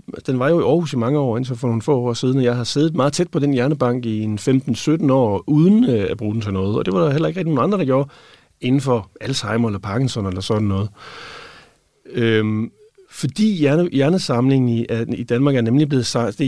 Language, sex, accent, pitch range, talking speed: Danish, male, native, 110-145 Hz, 220 wpm